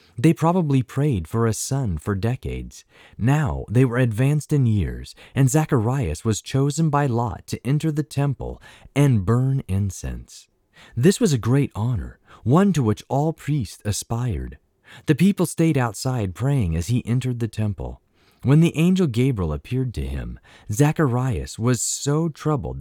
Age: 30-49